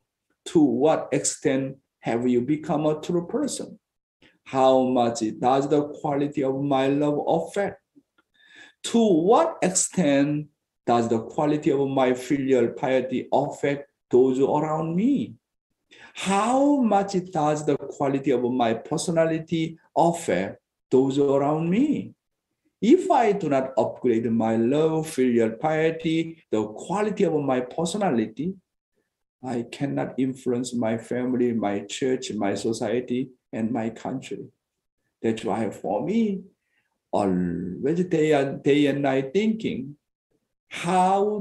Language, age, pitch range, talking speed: English, 50-69, 125-175 Hz, 115 wpm